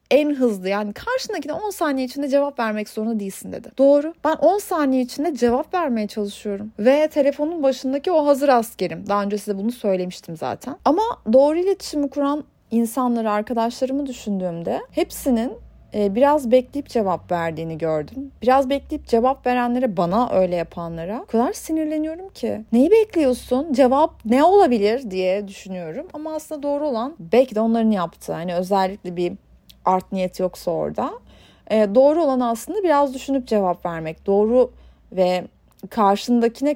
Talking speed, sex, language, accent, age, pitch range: 145 wpm, female, Turkish, native, 30-49, 205-280 Hz